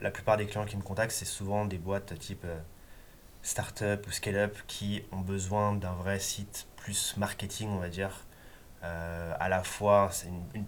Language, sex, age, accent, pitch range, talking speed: French, male, 20-39, French, 85-105 Hz, 190 wpm